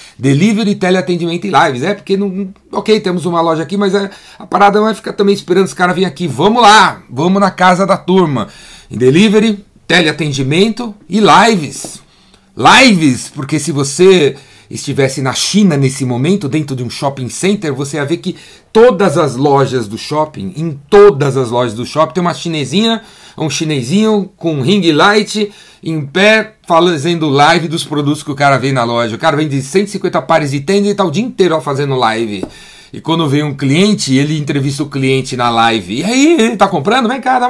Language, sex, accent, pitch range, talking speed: Portuguese, male, Brazilian, 135-190 Hz, 195 wpm